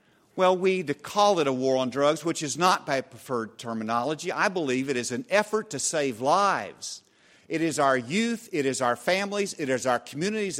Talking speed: 205 wpm